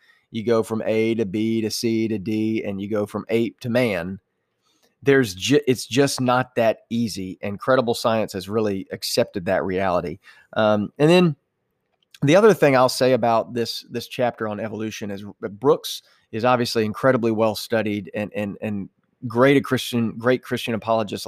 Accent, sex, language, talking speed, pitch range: American, male, English, 175 wpm, 105-125 Hz